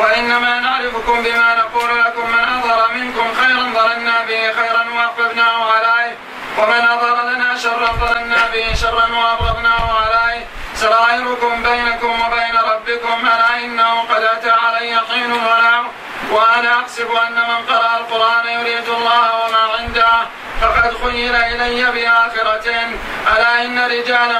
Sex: male